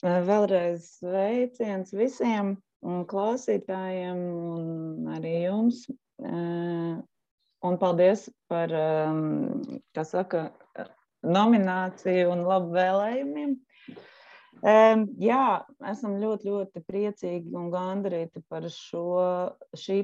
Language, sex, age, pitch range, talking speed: English, female, 30-49, 170-200 Hz, 80 wpm